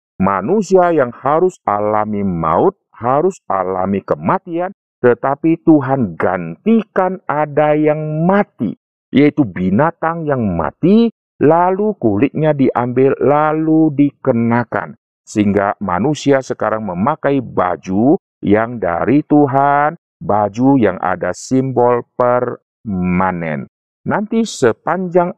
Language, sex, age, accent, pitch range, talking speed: Indonesian, male, 50-69, native, 115-160 Hz, 90 wpm